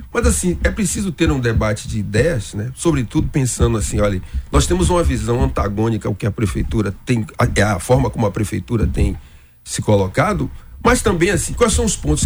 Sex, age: male, 40-59